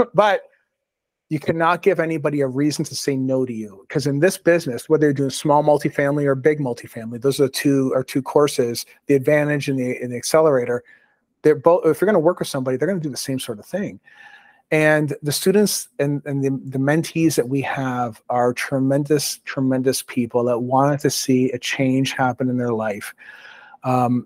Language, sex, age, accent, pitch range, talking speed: English, male, 40-59, American, 135-160 Hz, 205 wpm